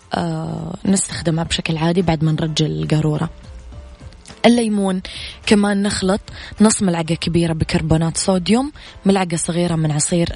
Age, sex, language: 20-39, female, Arabic